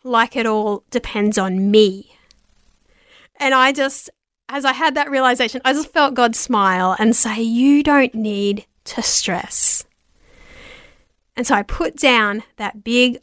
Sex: female